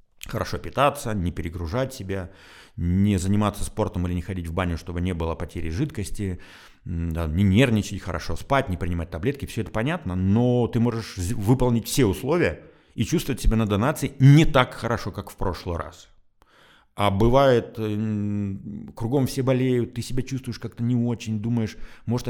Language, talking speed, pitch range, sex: Russian, 160 wpm, 90-115 Hz, male